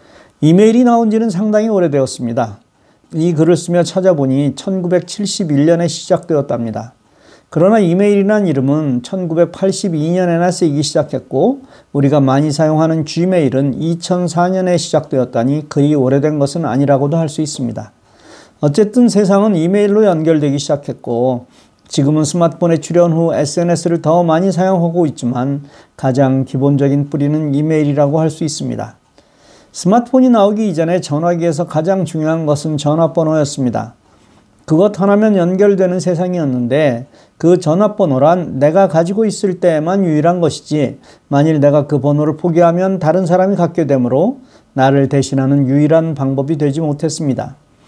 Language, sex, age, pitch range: Korean, male, 40-59, 140-180 Hz